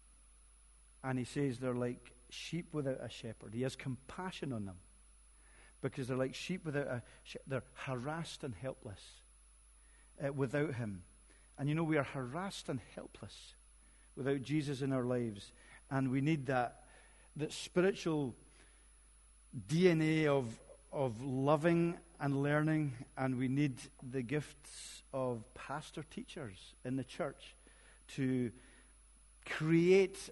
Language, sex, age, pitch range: English, male, 50-69, 125-155 Hz